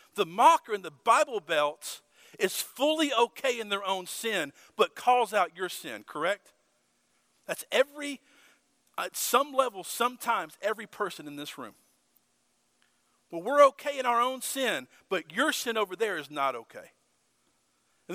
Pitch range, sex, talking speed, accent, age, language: 170-250 Hz, male, 150 wpm, American, 50-69, English